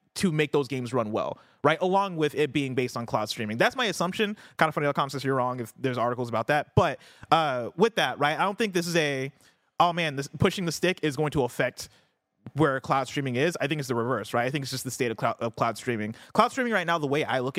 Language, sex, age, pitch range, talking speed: English, male, 30-49, 125-165 Hz, 270 wpm